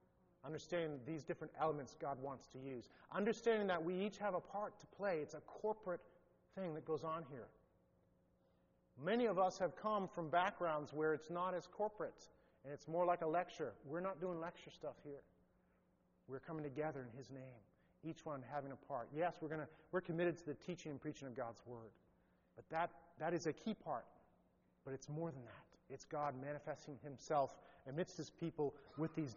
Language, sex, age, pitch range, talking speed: English, male, 40-59, 135-175 Hz, 190 wpm